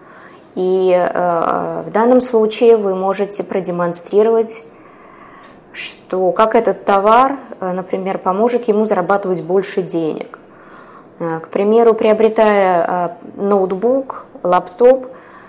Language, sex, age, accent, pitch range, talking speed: Russian, female, 20-39, native, 180-225 Hz, 85 wpm